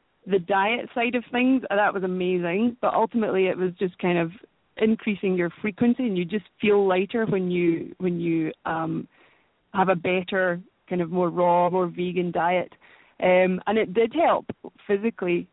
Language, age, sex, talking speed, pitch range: English, 20-39, female, 170 wpm, 180-215 Hz